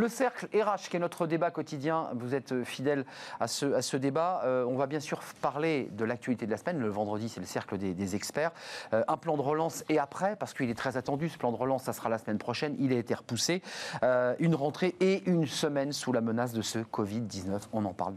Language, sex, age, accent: French, male, 40-59, French